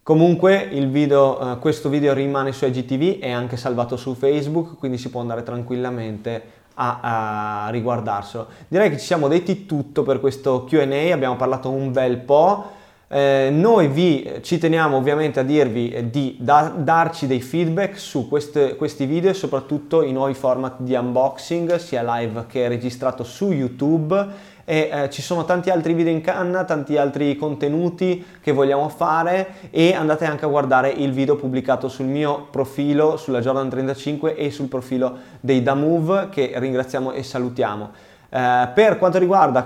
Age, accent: 20-39, native